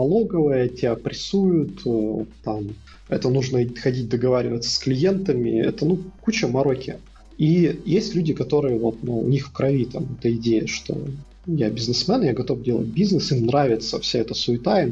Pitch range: 125-155 Hz